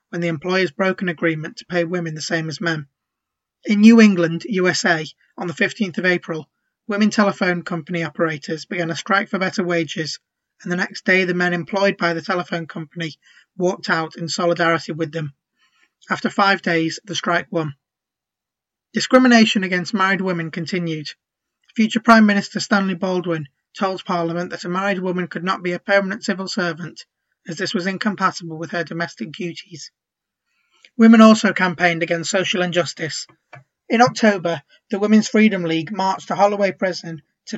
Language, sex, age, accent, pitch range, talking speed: English, male, 20-39, British, 170-200 Hz, 165 wpm